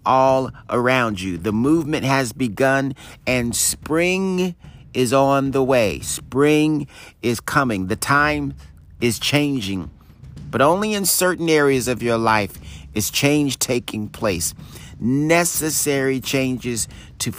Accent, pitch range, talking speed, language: American, 100-135 Hz, 120 wpm, English